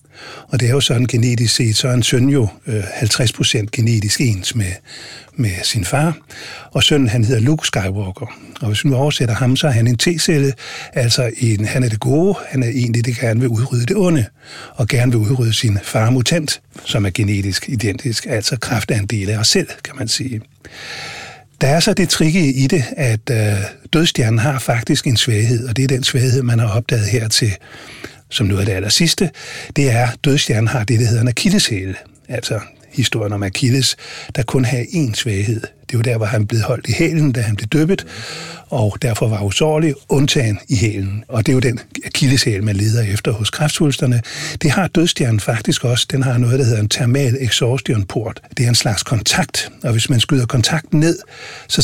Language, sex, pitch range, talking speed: Danish, male, 110-140 Hz, 205 wpm